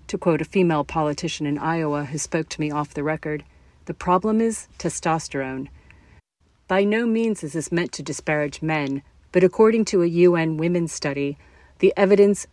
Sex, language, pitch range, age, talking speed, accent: female, English, 145-180 Hz, 40-59, 170 wpm, American